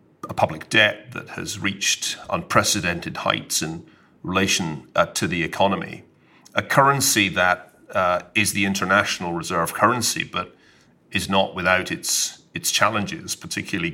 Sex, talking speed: male, 135 wpm